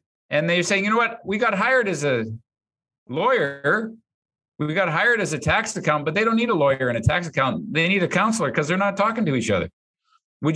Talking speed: 235 wpm